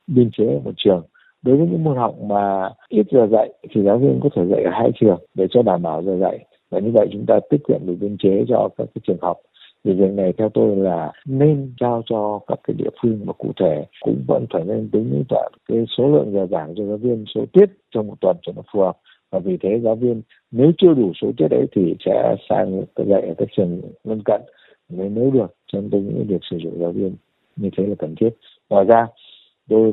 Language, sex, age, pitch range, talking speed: Vietnamese, male, 60-79, 95-120 Hz, 240 wpm